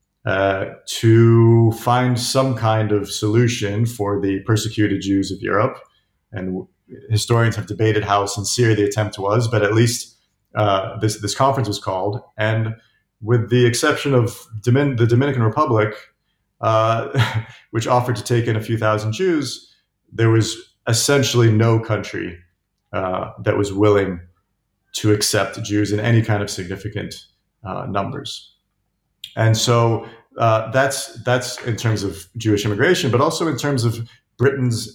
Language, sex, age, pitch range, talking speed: English, male, 40-59, 105-120 Hz, 145 wpm